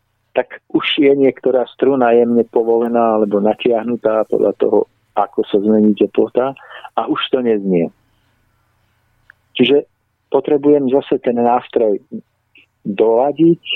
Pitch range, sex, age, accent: 110-120 Hz, male, 50-69, native